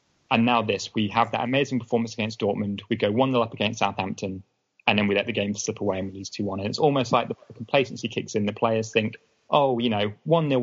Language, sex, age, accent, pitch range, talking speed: English, male, 20-39, British, 100-120 Hz, 245 wpm